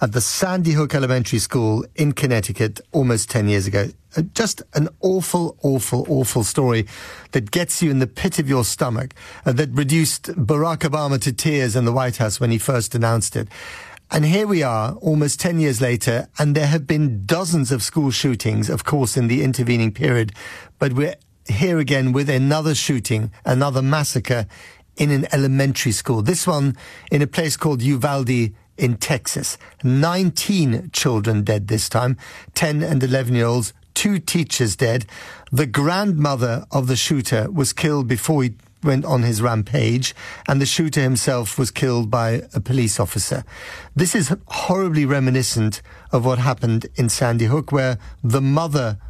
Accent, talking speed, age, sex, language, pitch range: British, 165 wpm, 50-69, male, English, 115-150 Hz